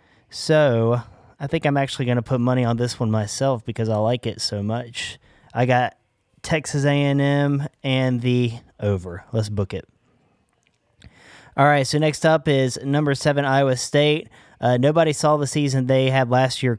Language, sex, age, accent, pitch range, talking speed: English, male, 30-49, American, 120-145 Hz, 170 wpm